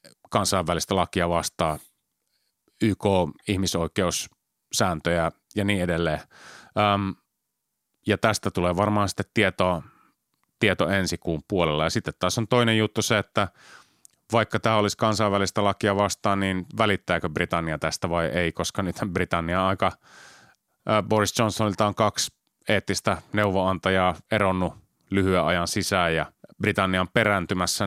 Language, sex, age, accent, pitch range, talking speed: Finnish, male, 30-49, native, 90-105 Hz, 120 wpm